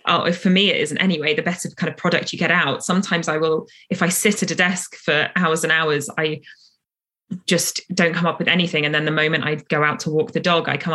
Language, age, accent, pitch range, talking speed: English, 20-39, British, 150-185 Hz, 250 wpm